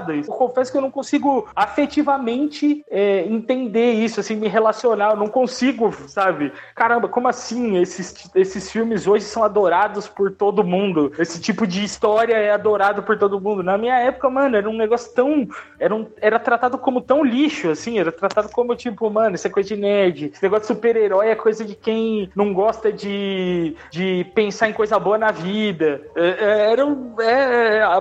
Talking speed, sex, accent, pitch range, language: 185 wpm, male, Brazilian, 190-235 Hz, Portuguese